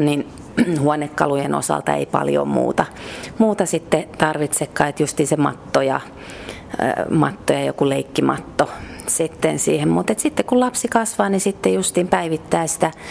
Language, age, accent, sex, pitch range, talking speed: Finnish, 30-49, native, female, 145-180 Hz, 130 wpm